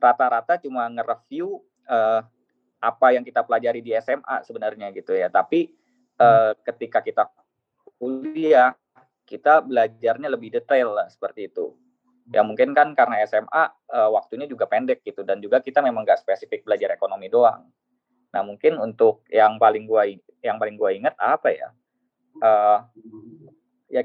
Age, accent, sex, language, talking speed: 20-39, native, male, Indonesian, 135 wpm